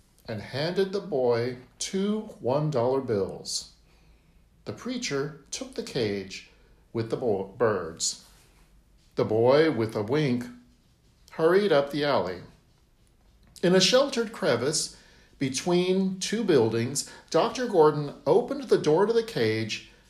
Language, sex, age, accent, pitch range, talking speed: English, male, 50-69, American, 120-190 Hz, 115 wpm